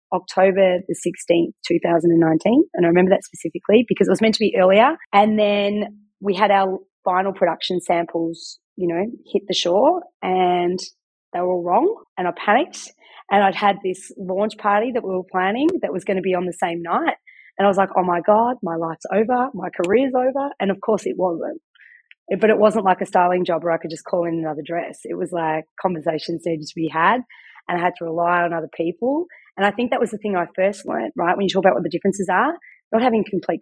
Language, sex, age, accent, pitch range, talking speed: English, female, 30-49, Australian, 175-225 Hz, 225 wpm